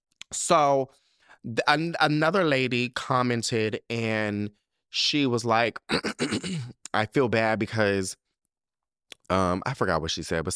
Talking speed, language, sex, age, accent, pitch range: 120 wpm, English, male, 20-39, American, 95-140 Hz